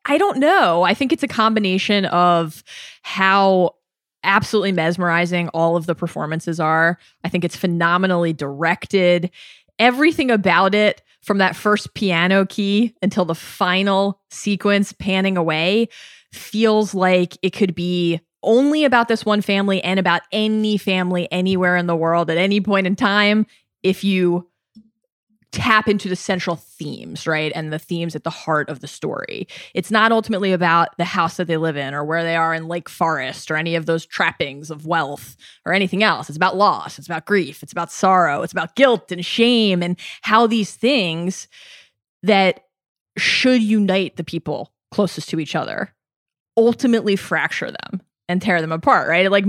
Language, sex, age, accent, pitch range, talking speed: English, female, 20-39, American, 170-215 Hz, 170 wpm